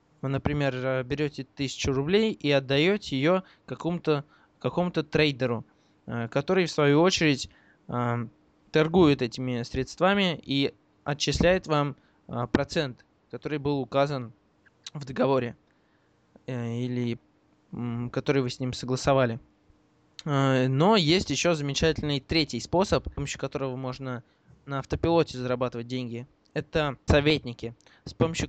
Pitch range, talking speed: 125-150 Hz, 105 wpm